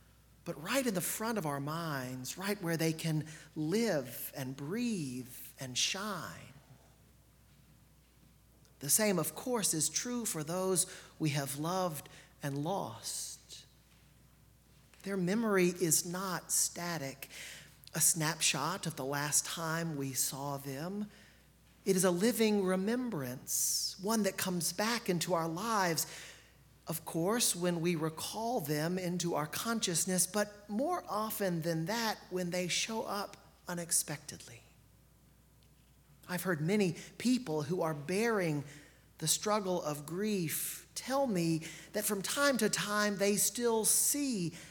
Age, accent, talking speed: 40-59, American, 130 wpm